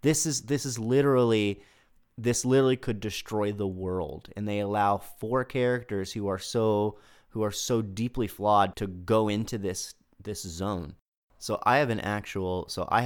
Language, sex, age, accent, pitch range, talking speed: English, male, 30-49, American, 95-110 Hz, 170 wpm